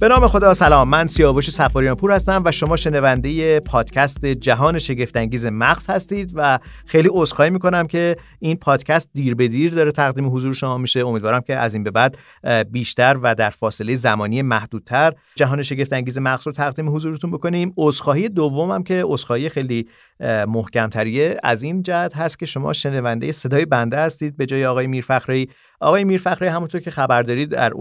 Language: Persian